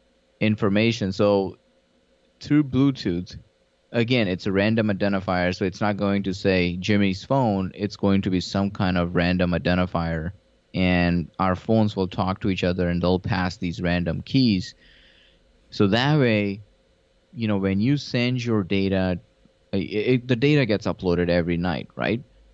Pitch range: 90-110 Hz